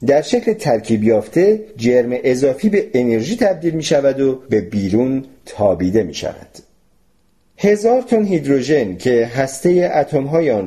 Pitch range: 95-155 Hz